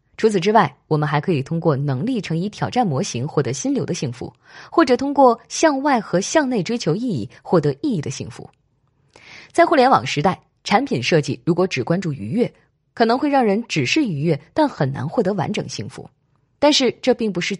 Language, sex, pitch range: Chinese, female, 140-235 Hz